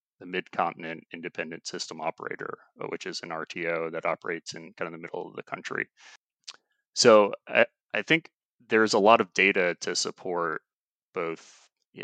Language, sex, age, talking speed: English, male, 30-49, 165 wpm